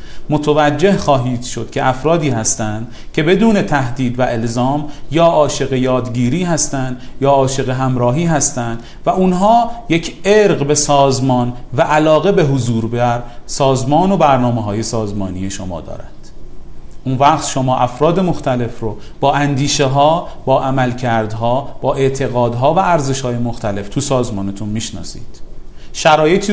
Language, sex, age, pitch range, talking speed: Persian, male, 40-59, 115-150 Hz, 130 wpm